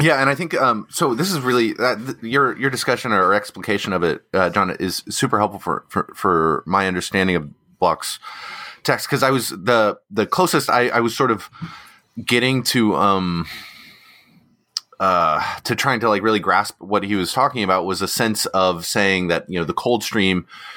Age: 30-49